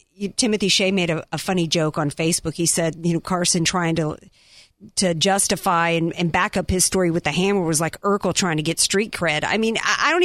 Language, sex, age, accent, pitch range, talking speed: English, female, 50-69, American, 190-245 Hz, 235 wpm